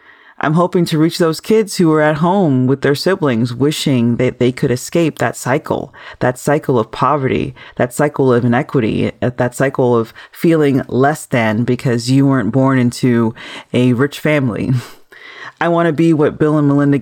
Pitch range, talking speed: 125-155 Hz, 175 wpm